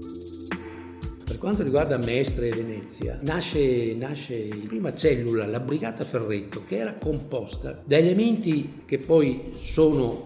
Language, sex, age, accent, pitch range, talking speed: Italian, male, 60-79, native, 110-150 Hz, 115 wpm